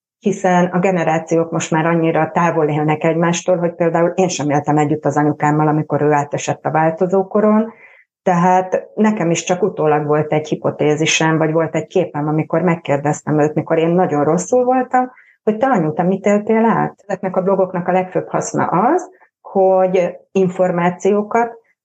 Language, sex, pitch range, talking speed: Hungarian, female, 160-190 Hz, 160 wpm